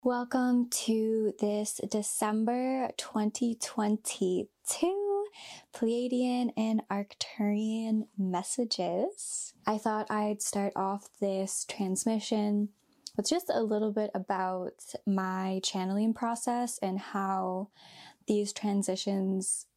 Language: English